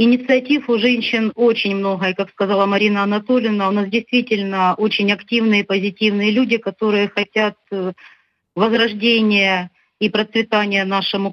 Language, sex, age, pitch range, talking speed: Russian, female, 50-69, 195-220 Hz, 125 wpm